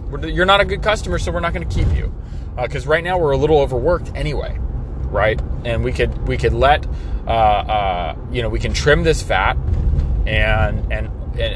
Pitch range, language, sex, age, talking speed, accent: 90-135 Hz, English, male, 30-49, 200 wpm, American